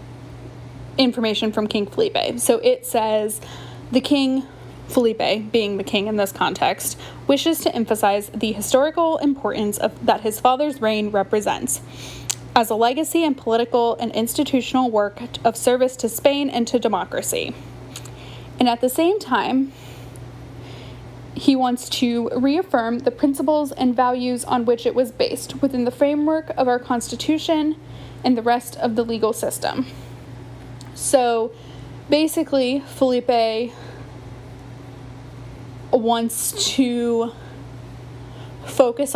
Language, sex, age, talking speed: English, female, 10-29, 125 wpm